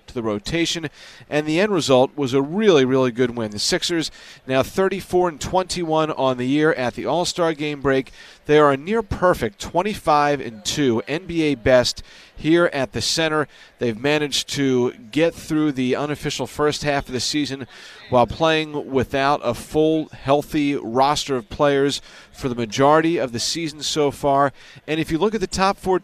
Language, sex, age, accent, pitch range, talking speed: English, male, 40-59, American, 125-160 Hz, 170 wpm